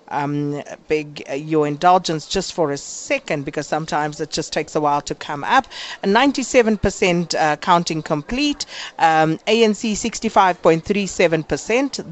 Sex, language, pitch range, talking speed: female, English, 155-185 Hz, 130 wpm